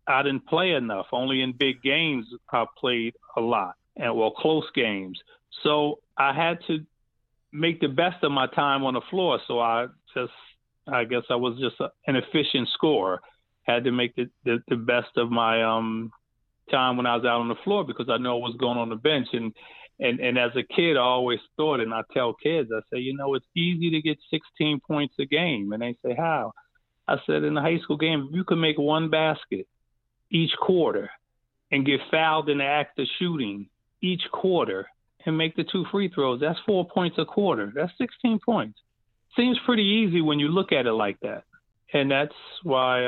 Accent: American